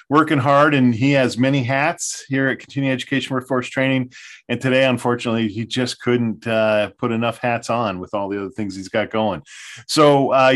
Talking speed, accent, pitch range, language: 195 wpm, American, 110-135 Hz, English